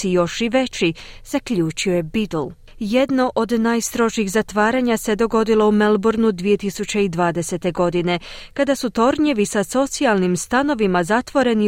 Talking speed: 120 wpm